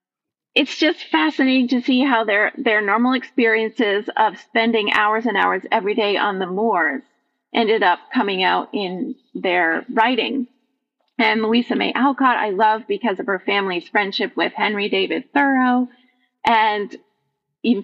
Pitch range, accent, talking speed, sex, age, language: 210-250 Hz, American, 150 wpm, female, 30-49, English